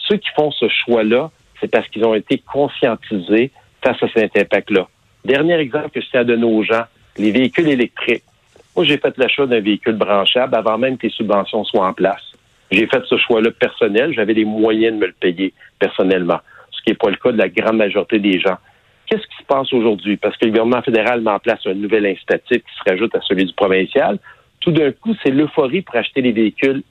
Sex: male